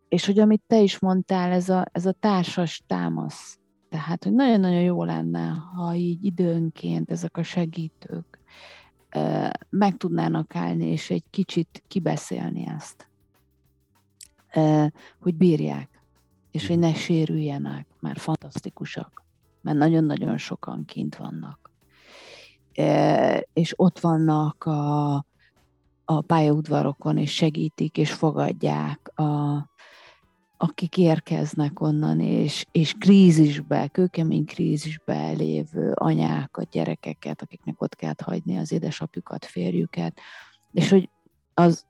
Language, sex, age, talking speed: Hungarian, female, 40-59, 115 wpm